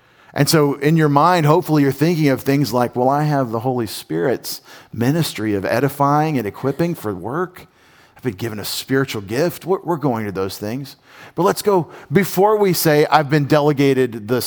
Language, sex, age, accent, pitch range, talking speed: English, male, 40-59, American, 115-145 Hz, 185 wpm